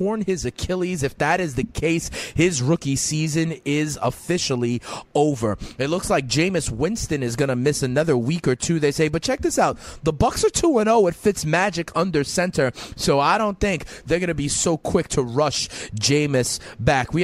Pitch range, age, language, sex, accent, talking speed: 135-180 Hz, 30-49, English, male, American, 195 wpm